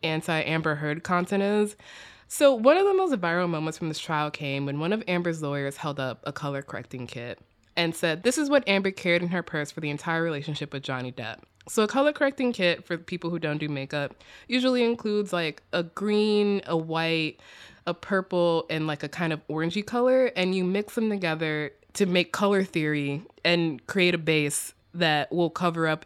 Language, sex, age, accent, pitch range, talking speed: English, female, 20-39, American, 155-240 Hz, 200 wpm